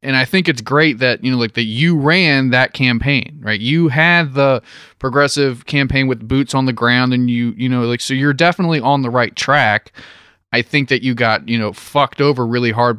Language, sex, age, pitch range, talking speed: English, male, 20-39, 115-135 Hz, 220 wpm